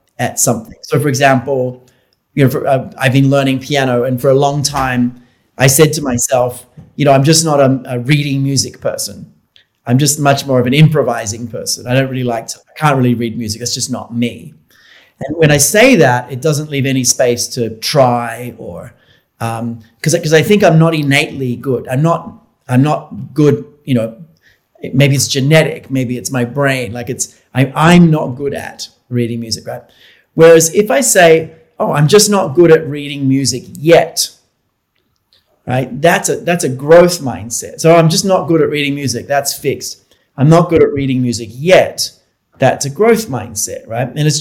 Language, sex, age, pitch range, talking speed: Vietnamese, male, 30-49, 125-160 Hz, 195 wpm